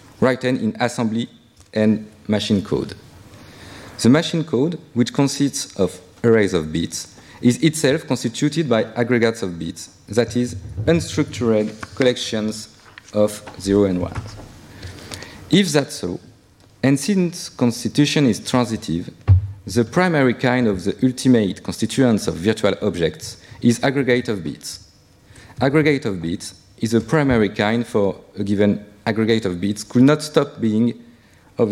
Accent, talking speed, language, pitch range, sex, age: French, 130 wpm, French, 95-125 Hz, male, 40-59